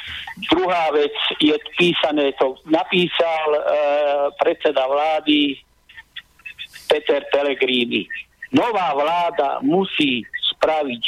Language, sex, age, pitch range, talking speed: Slovak, male, 50-69, 140-190 Hz, 80 wpm